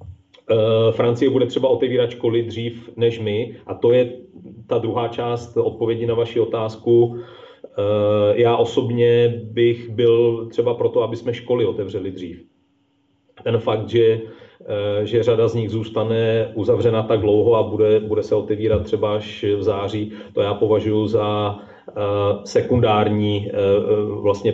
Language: Czech